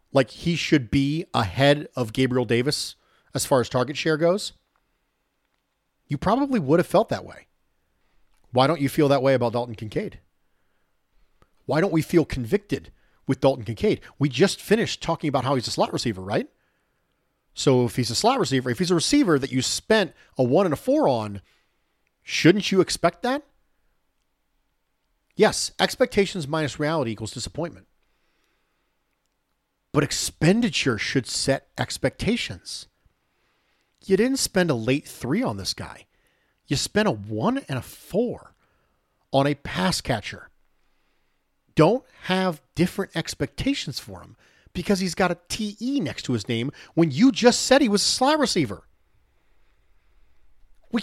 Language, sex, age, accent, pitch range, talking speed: English, male, 40-59, American, 130-200 Hz, 150 wpm